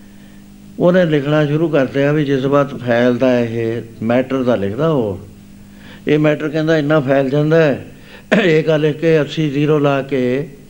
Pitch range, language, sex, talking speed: 120-155 Hz, Punjabi, male, 165 wpm